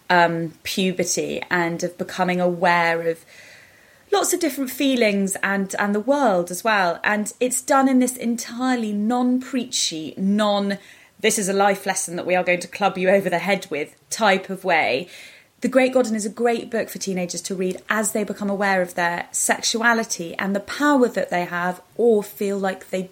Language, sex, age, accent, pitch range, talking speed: English, female, 20-39, British, 185-230 Hz, 185 wpm